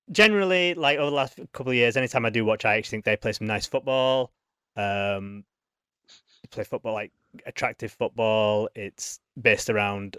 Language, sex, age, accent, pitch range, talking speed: English, male, 20-39, British, 110-130 Hz, 175 wpm